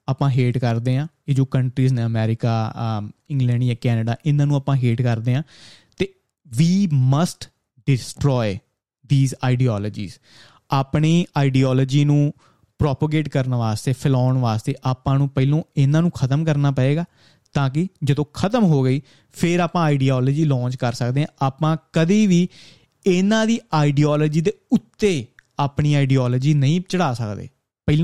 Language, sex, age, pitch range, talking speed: Punjabi, male, 30-49, 130-160 Hz, 120 wpm